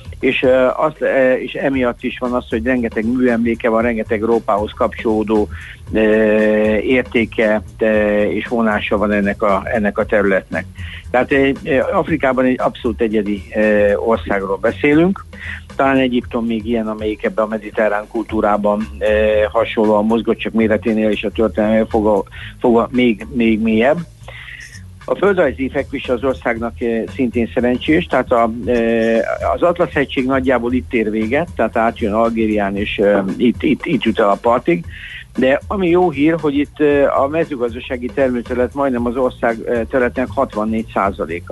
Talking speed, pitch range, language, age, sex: 135 wpm, 110-130 Hz, Hungarian, 60-79, male